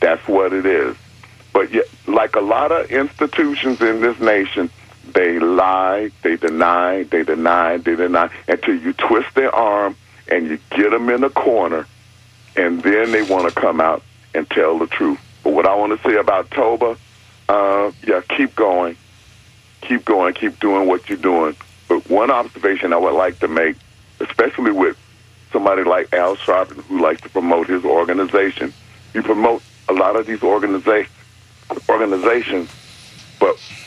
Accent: American